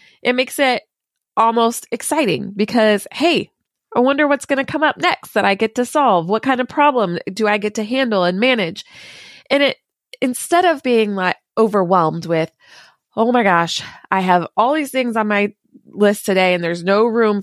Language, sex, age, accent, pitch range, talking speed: English, female, 20-39, American, 180-240 Hz, 190 wpm